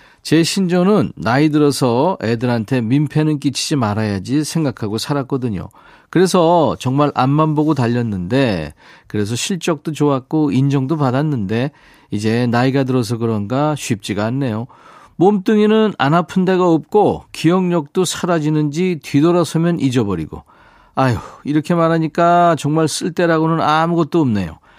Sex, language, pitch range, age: male, Korean, 120-170 Hz, 40-59